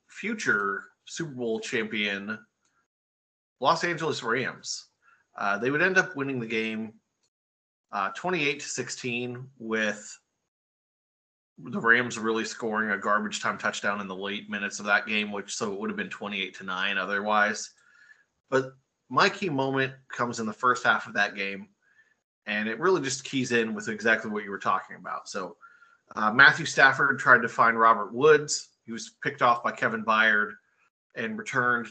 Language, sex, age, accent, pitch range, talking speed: English, male, 30-49, American, 110-135 Hz, 165 wpm